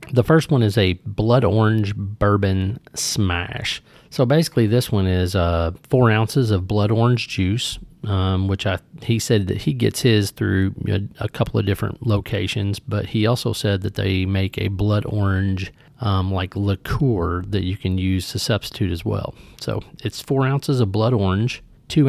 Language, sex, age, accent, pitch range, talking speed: English, male, 40-59, American, 95-115 Hz, 180 wpm